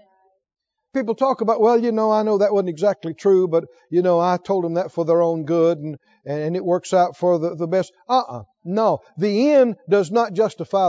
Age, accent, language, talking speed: 50-69, American, English, 215 wpm